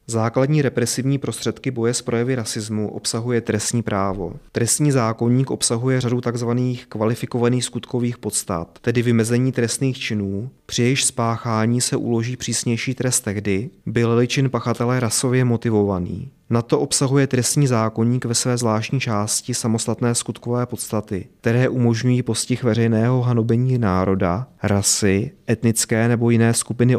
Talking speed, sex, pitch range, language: 130 wpm, male, 110-125 Hz, Czech